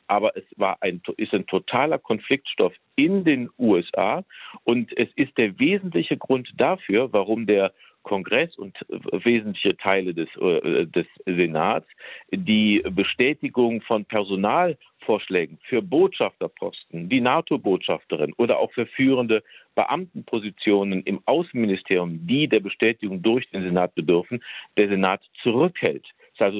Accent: German